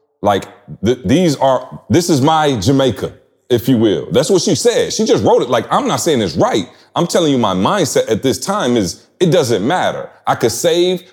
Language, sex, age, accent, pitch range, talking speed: English, male, 30-49, American, 115-150 Hz, 210 wpm